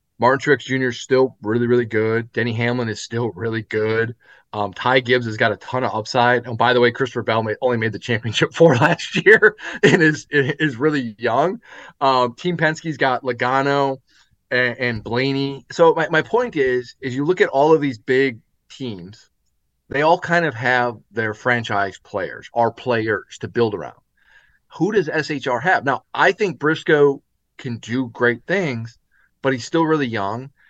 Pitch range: 115-150 Hz